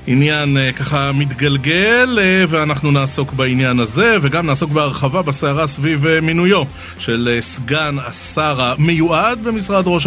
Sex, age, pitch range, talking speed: male, 30-49, 125-160 Hz, 115 wpm